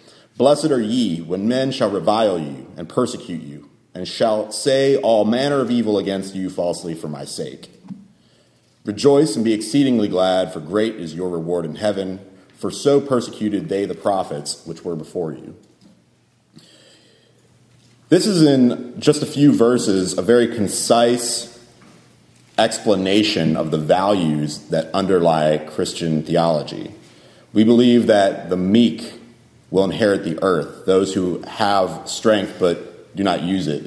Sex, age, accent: male, 30-49, American